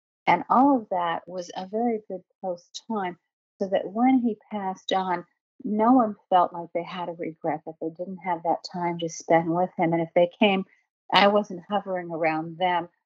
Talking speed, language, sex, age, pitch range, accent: 195 wpm, English, female, 50-69, 165-195 Hz, American